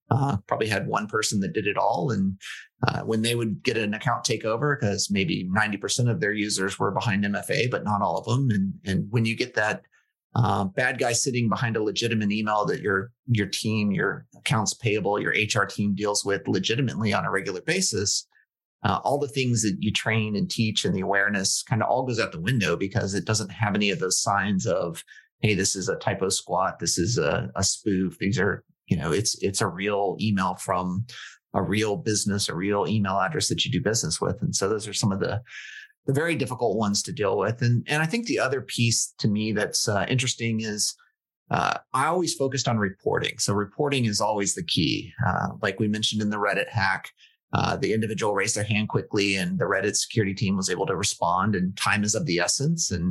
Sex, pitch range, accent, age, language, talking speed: male, 100-115 Hz, American, 30-49, English, 220 wpm